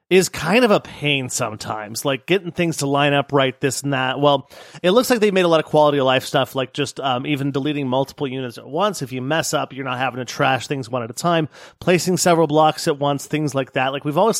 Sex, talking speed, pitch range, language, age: male, 265 wpm, 130-170 Hz, English, 30-49